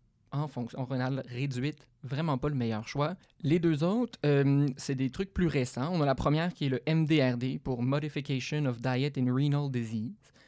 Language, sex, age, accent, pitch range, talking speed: French, male, 20-39, Canadian, 125-150 Hz, 190 wpm